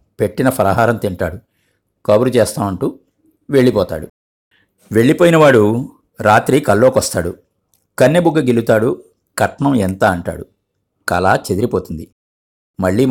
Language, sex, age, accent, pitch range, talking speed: Telugu, male, 50-69, native, 95-130 Hz, 80 wpm